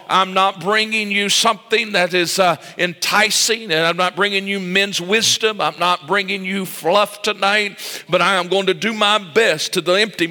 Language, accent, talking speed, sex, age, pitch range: English, American, 185 wpm, male, 50-69, 175-215 Hz